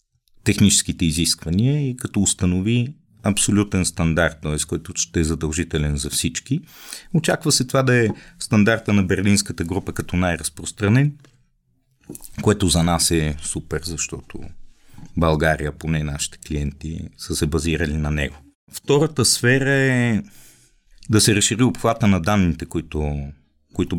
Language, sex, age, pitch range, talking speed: Bulgarian, male, 40-59, 80-105 Hz, 130 wpm